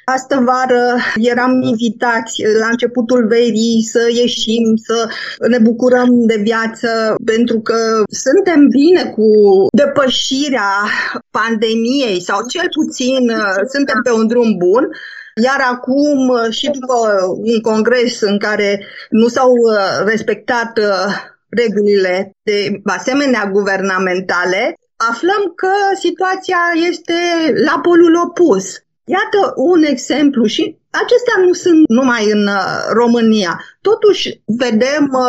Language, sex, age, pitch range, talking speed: Romanian, female, 20-39, 220-290 Hz, 105 wpm